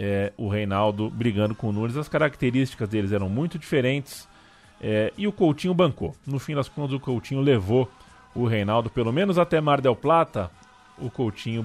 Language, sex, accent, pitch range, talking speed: Portuguese, male, Brazilian, 105-140 Hz, 180 wpm